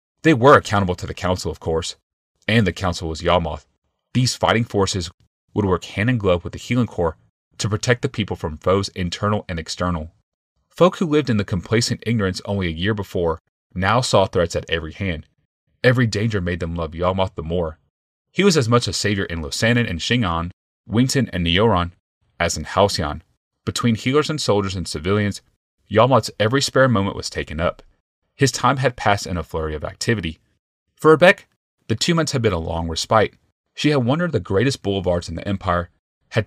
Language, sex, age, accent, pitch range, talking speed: English, male, 30-49, American, 85-115 Hz, 195 wpm